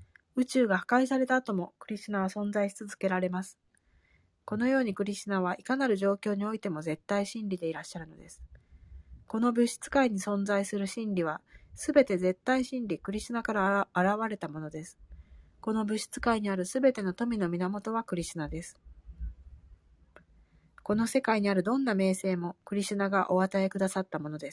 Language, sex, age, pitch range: Japanese, female, 40-59, 150-220 Hz